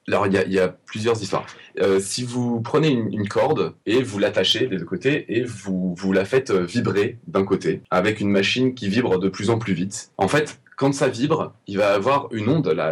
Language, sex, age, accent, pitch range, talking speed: French, male, 20-39, French, 95-130 Hz, 240 wpm